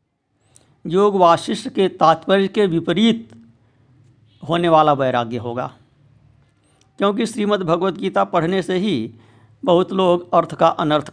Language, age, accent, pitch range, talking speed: Hindi, 60-79, native, 125-175 Hz, 115 wpm